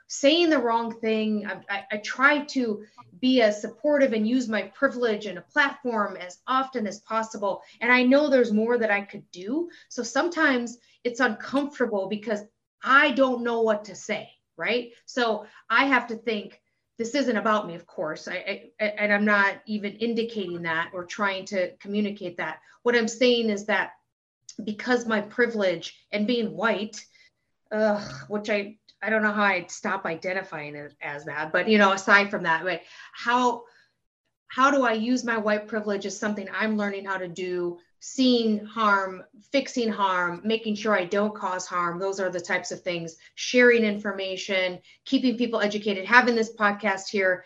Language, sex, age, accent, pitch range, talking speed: English, female, 30-49, American, 195-240 Hz, 175 wpm